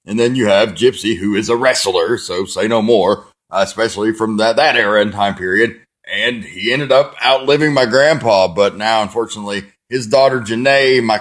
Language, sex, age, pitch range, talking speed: English, male, 30-49, 95-120 Hz, 195 wpm